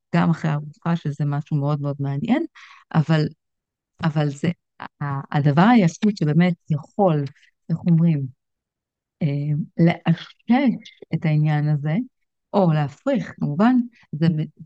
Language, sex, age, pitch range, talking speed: Hebrew, female, 30-49, 150-180 Hz, 100 wpm